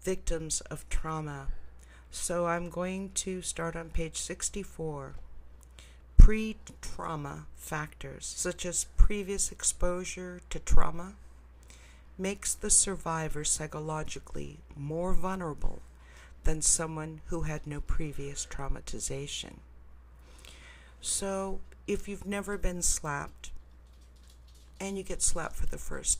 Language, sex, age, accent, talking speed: English, female, 60-79, American, 105 wpm